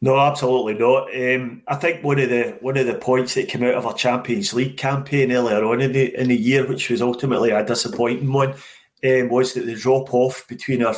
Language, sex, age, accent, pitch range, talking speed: English, male, 30-49, British, 120-135 Hz, 230 wpm